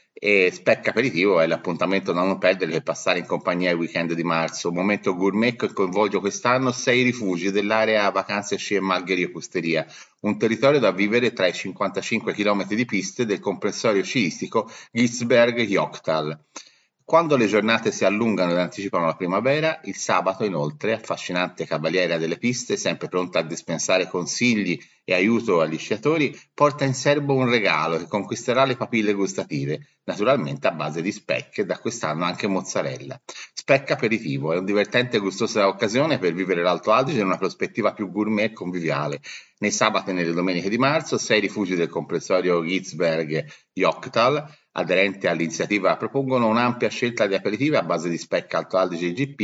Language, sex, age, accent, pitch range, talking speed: Italian, male, 30-49, native, 95-120 Hz, 165 wpm